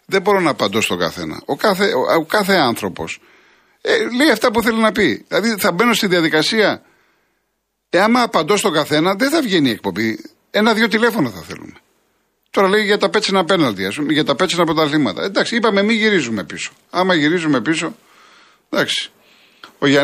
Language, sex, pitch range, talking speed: Greek, male, 110-175 Hz, 180 wpm